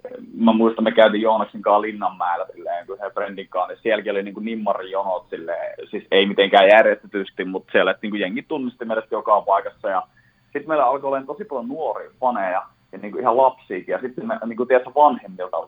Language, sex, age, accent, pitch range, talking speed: Finnish, male, 30-49, native, 100-135 Hz, 190 wpm